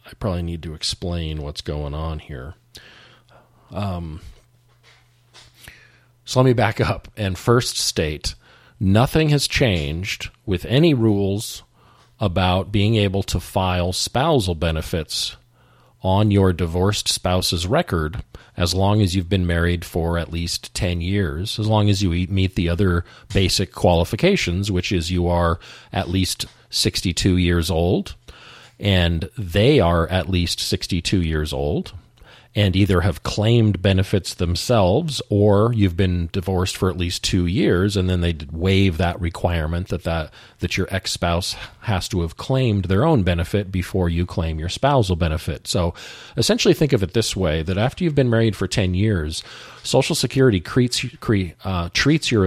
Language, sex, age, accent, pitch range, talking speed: English, male, 40-59, American, 90-115 Hz, 150 wpm